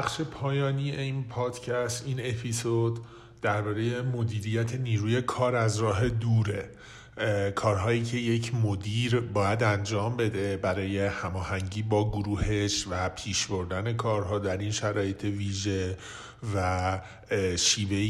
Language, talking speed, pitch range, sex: Persian, 115 wpm, 105-130 Hz, male